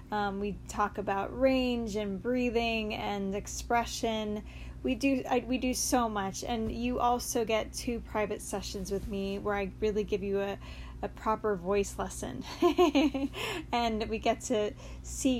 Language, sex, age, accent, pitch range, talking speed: English, female, 10-29, American, 210-245 Hz, 155 wpm